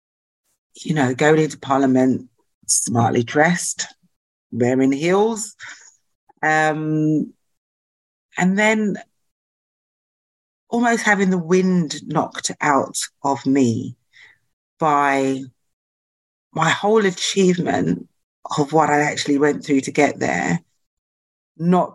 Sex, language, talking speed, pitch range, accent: female, English, 95 wpm, 130-170 Hz, British